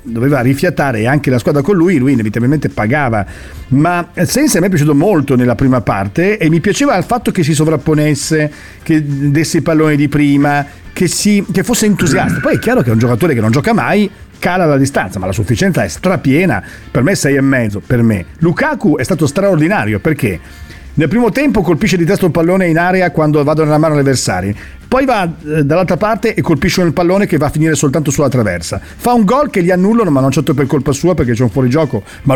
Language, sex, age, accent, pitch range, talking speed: Italian, male, 40-59, native, 130-190 Hz, 220 wpm